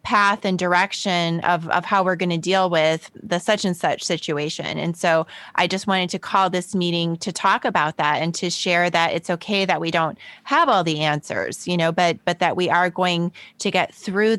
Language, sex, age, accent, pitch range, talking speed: English, female, 30-49, American, 175-210 Hz, 215 wpm